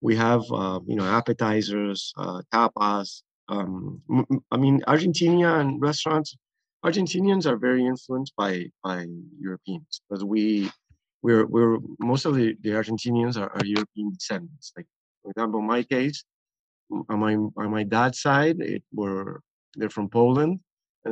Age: 30-49